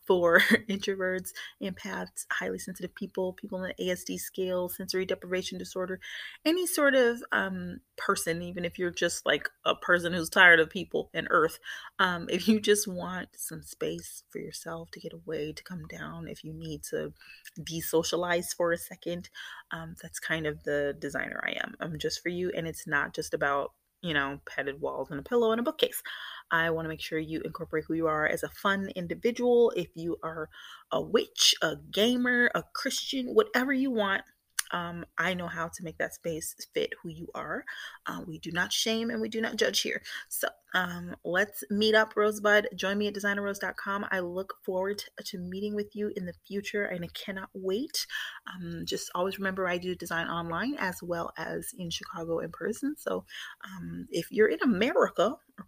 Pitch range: 170-220 Hz